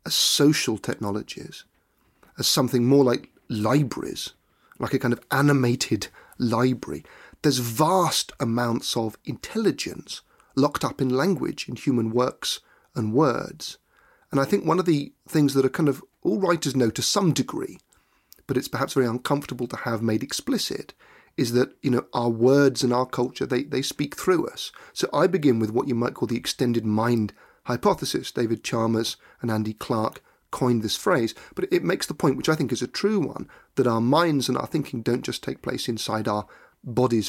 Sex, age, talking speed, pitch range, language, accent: male, 40-59, 180 wpm, 115-140 Hz, English, British